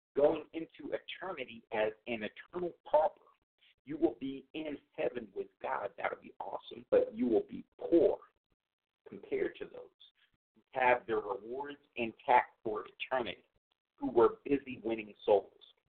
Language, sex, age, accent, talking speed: English, male, 50-69, American, 145 wpm